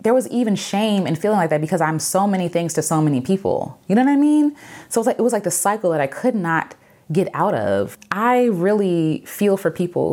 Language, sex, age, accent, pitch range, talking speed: English, female, 20-39, American, 145-195 Hz, 245 wpm